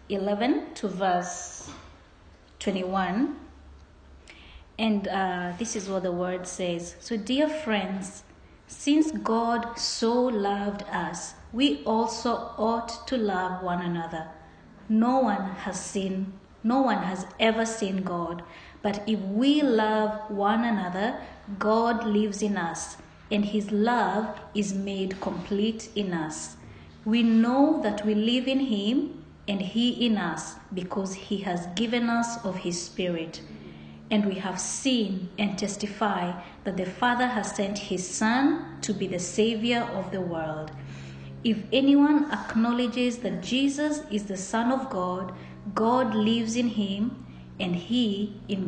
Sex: female